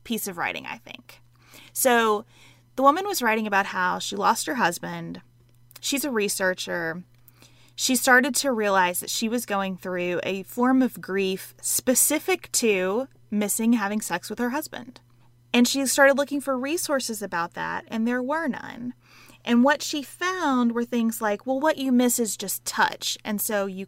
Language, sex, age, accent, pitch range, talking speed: English, female, 30-49, American, 210-290 Hz, 175 wpm